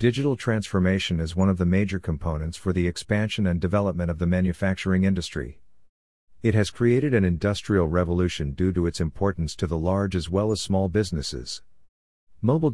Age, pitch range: 50-69, 85-100 Hz